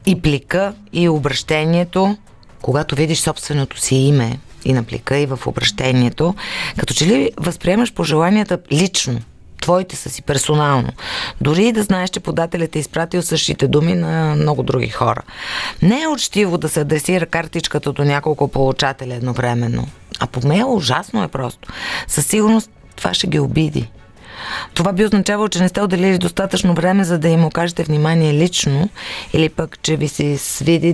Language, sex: Bulgarian, female